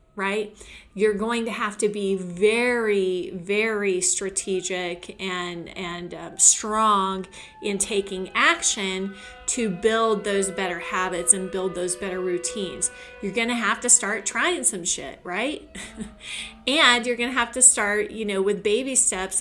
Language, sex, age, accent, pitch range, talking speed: English, female, 30-49, American, 190-230 Hz, 150 wpm